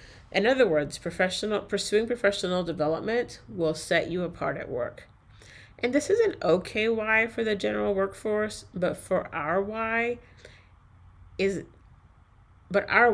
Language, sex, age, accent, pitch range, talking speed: English, female, 30-49, American, 135-190 Hz, 135 wpm